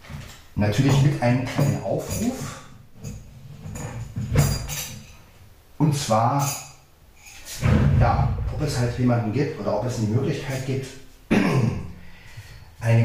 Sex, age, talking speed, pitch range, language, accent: male, 40-59, 90 wpm, 95-125 Hz, German, German